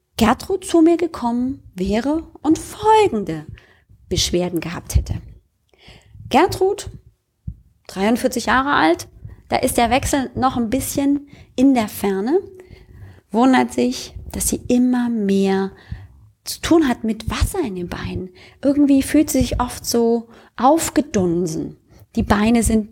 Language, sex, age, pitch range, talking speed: German, female, 20-39, 180-270 Hz, 125 wpm